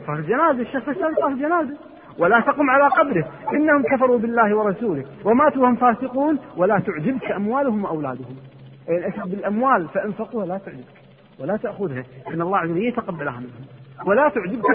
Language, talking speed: Arabic, 140 wpm